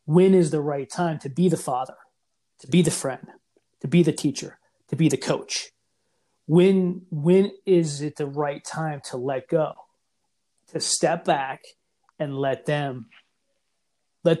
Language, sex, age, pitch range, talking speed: English, male, 30-49, 135-170 Hz, 160 wpm